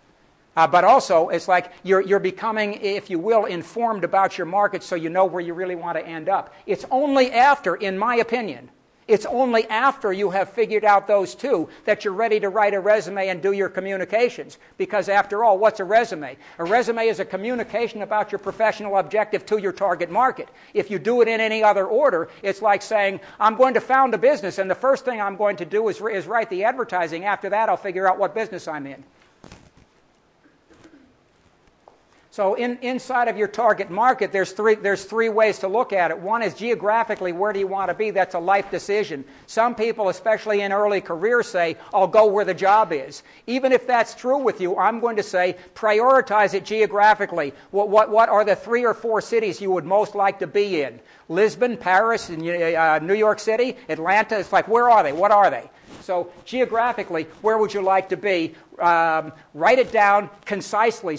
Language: English